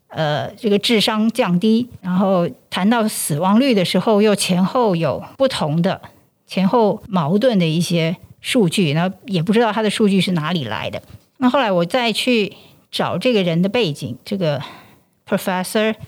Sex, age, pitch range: female, 50-69, 175-230 Hz